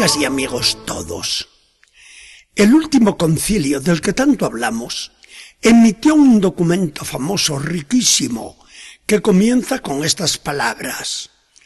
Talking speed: 105 wpm